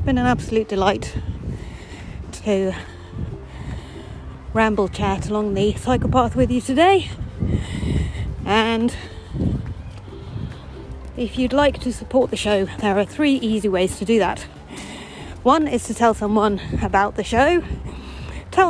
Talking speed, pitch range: 125 wpm, 200-255 Hz